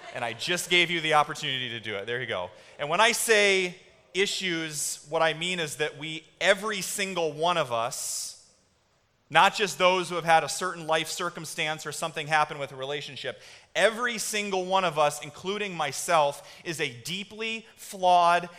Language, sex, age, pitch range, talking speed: English, male, 30-49, 140-185 Hz, 180 wpm